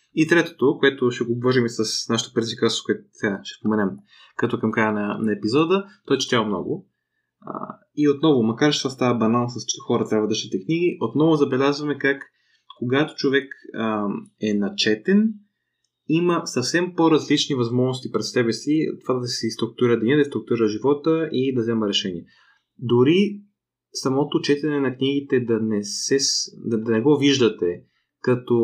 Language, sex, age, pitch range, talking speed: Bulgarian, male, 20-39, 110-150 Hz, 170 wpm